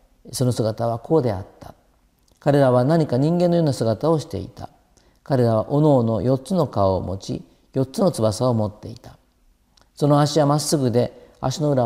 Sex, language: male, Japanese